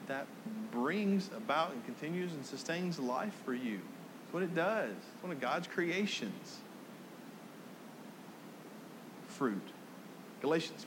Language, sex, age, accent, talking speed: English, male, 40-59, American, 115 wpm